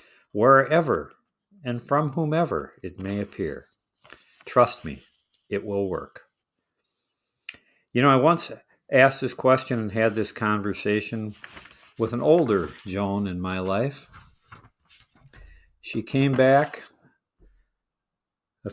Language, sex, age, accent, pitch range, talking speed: English, male, 50-69, American, 100-130 Hz, 110 wpm